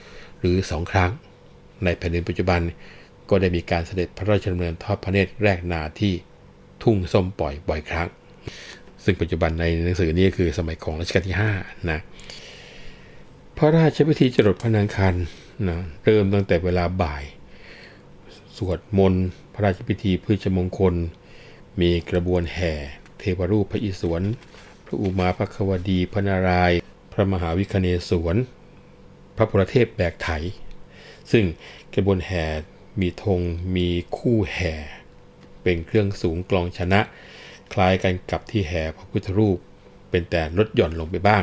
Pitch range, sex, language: 85-100 Hz, male, Thai